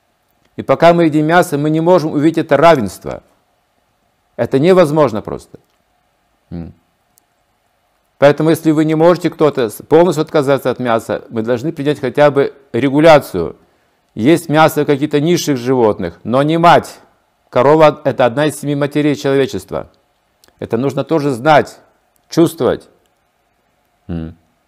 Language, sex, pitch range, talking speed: Russian, male, 130-160 Hz, 125 wpm